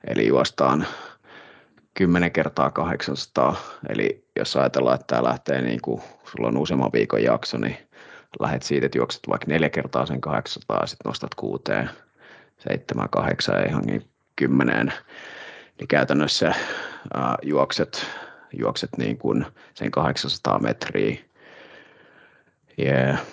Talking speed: 115 wpm